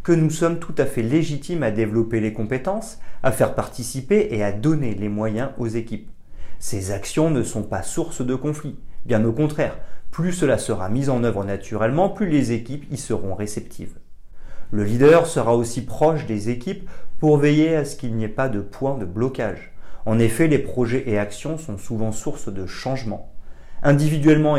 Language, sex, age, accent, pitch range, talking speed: French, male, 40-59, French, 105-150 Hz, 185 wpm